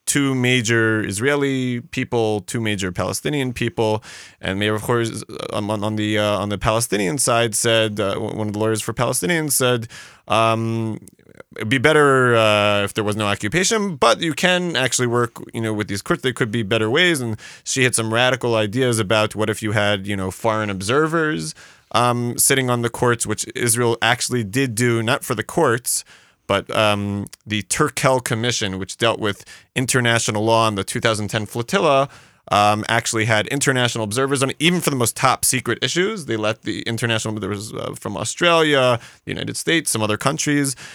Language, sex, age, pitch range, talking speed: English, male, 30-49, 110-130 Hz, 185 wpm